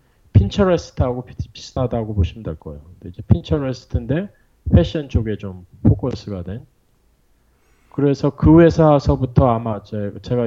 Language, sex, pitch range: Korean, male, 100-125 Hz